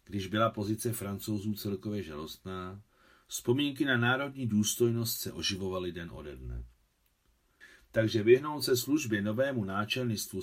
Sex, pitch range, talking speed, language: male, 90-120 Hz, 120 wpm, Czech